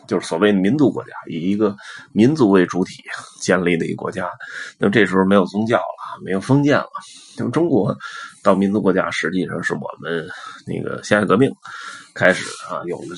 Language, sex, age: Chinese, male, 30-49